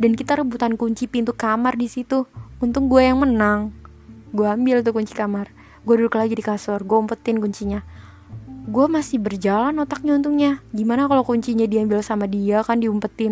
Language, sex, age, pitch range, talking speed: Indonesian, female, 20-39, 210-265 Hz, 170 wpm